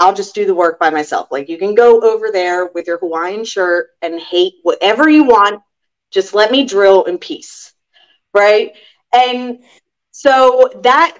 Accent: American